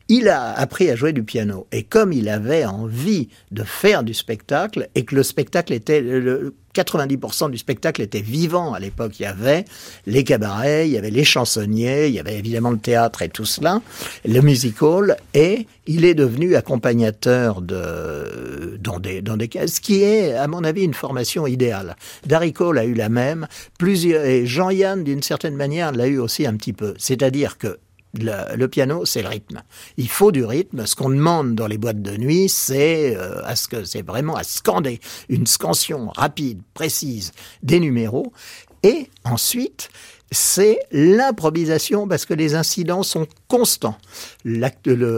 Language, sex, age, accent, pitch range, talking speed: French, male, 60-79, French, 115-170 Hz, 180 wpm